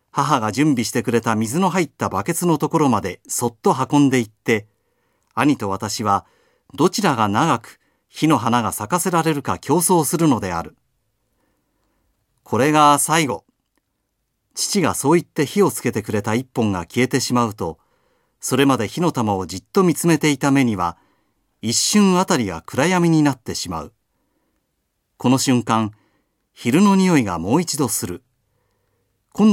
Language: Chinese